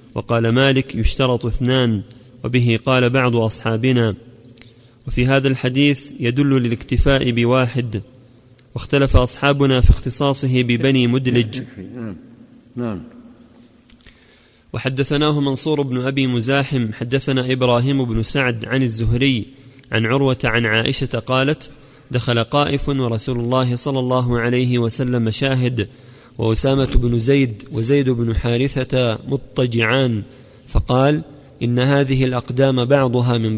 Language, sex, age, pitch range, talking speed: Arabic, male, 30-49, 120-135 Hz, 105 wpm